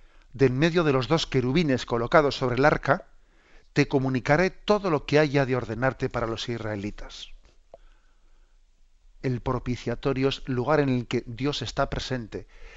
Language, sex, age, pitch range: Spanish, male, 50-69, 115-140 Hz